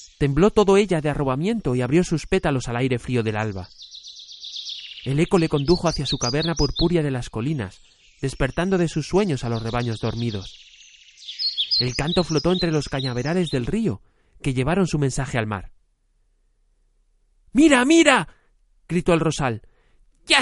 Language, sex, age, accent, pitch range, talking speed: Spanish, male, 40-59, Spanish, 100-150 Hz, 155 wpm